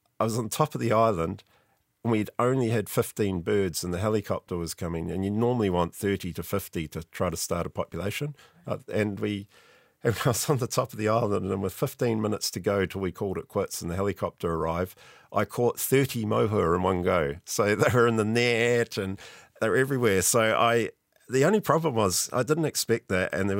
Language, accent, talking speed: English, Australian, 215 wpm